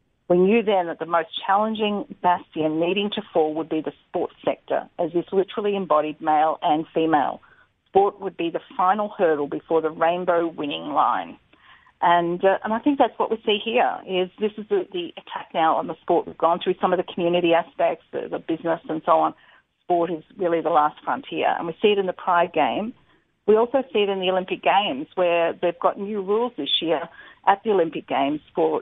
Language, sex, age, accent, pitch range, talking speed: English, female, 40-59, Australian, 165-210 Hz, 210 wpm